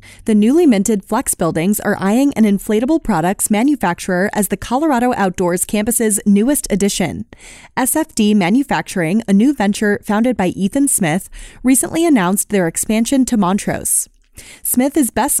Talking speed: 140 wpm